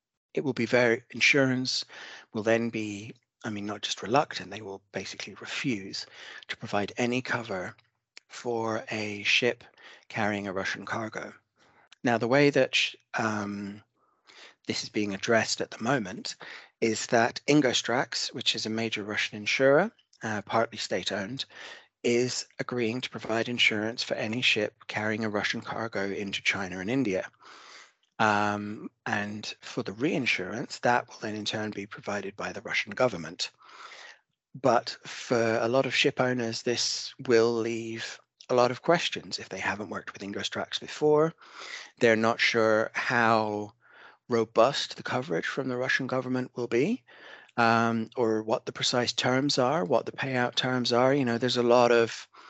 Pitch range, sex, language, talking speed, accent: 110-125 Hz, male, English, 160 wpm, British